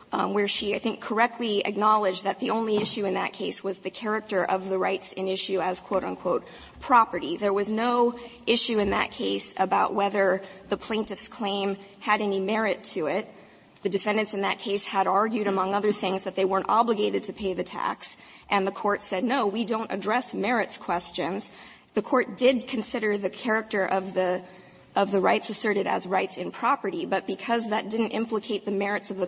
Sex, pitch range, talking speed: female, 190-220 Hz, 195 wpm